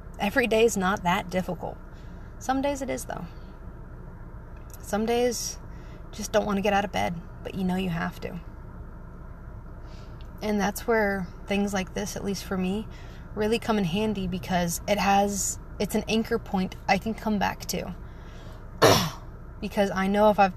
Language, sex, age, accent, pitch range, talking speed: English, female, 20-39, American, 170-205 Hz, 170 wpm